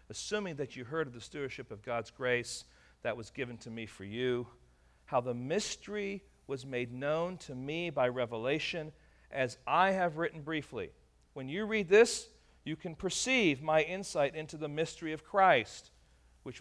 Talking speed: 170 wpm